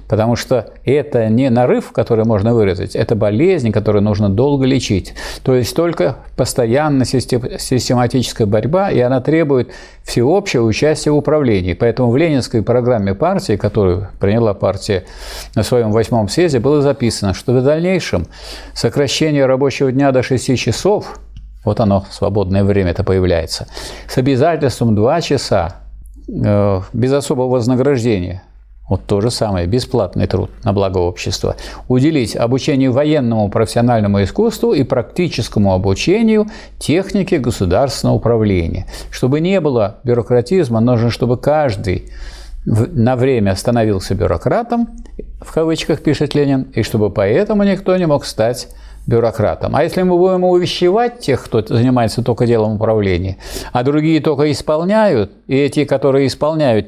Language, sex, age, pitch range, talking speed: Russian, male, 50-69, 105-145 Hz, 130 wpm